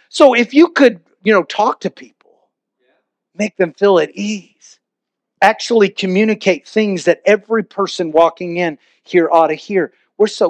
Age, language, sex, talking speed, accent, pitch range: 40-59, English, male, 160 wpm, American, 175-220 Hz